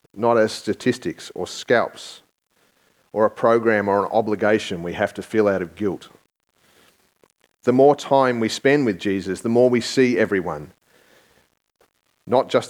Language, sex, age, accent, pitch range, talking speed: English, male, 40-59, Australian, 110-140 Hz, 150 wpm